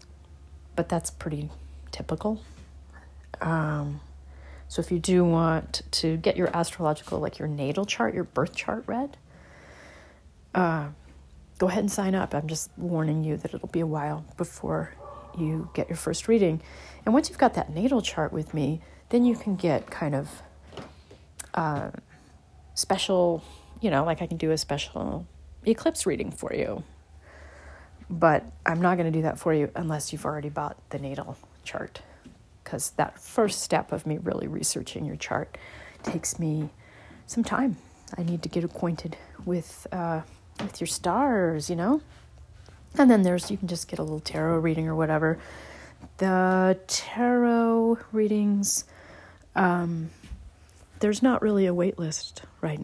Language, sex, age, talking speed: English, female, 30-49, 155 wpm